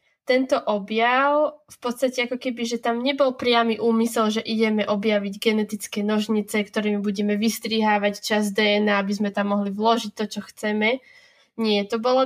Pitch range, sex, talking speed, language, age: 215-255 Hz, female, 155 wpm, Slovak, 10-29